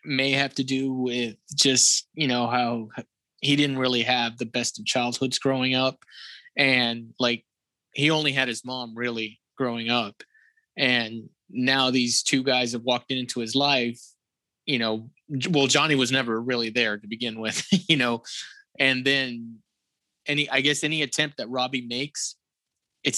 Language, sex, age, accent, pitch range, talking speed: English, male, 20-39, American, 120-140 Hz, 165 wpm